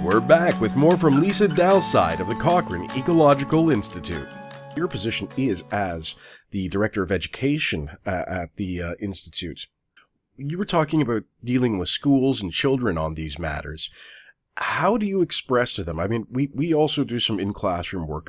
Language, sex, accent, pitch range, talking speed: English, male, American, 85-120 Hz, 165 wpm